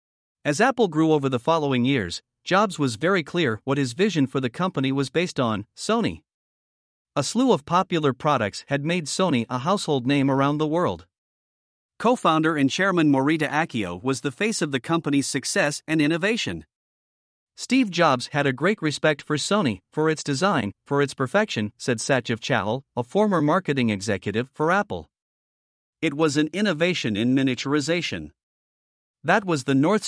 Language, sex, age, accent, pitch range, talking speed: English, male, 50-69, American, 125-170 Hz, 165 wpm